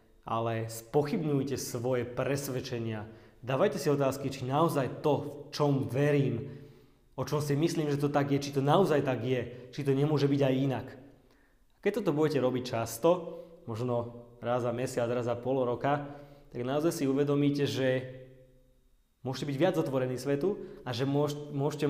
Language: Slovak